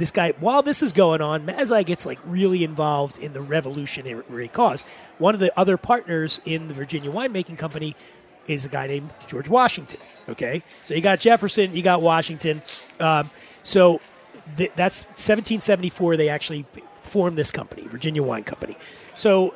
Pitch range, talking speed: 155-195 Hz, 165 wpm